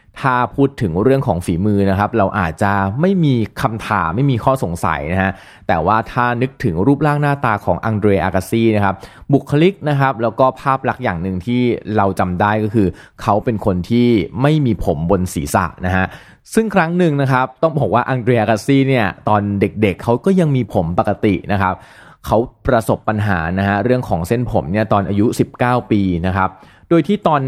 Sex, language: male, Thai